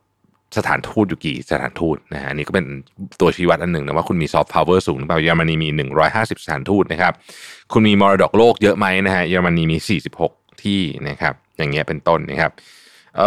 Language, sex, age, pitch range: Thai, male, 20-39, 80-105 Hz